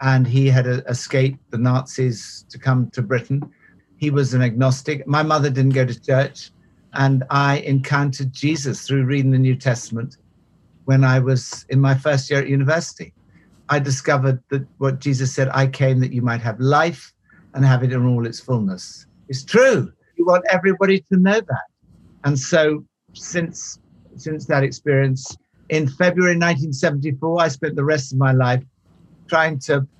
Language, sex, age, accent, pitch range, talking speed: English, male, 60-79, British, 130-170 Hz, 170 wpm